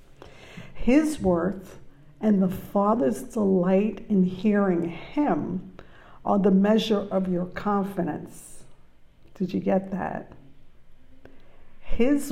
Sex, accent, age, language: female, American, 60-79, English